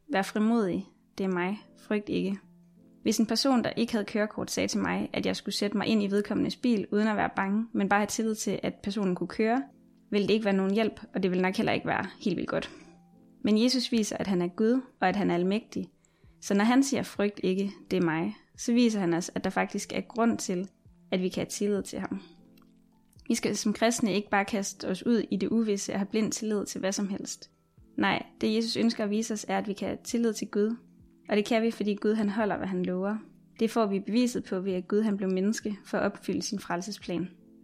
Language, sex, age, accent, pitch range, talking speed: Danish, female, 20-39, native, 195-225 Hz, 245 wpm